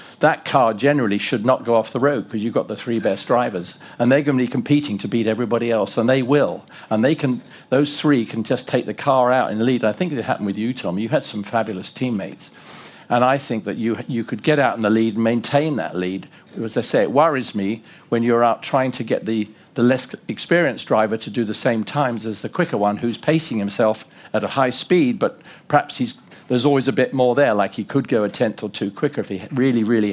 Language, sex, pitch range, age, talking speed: English, male, 110-135 Hz, 50-69, 250 wpm